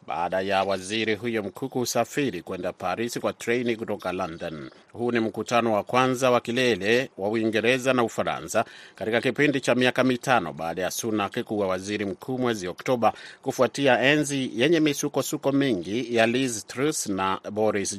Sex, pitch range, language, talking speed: male, 105-130 Hz, Swahili, 155 wpm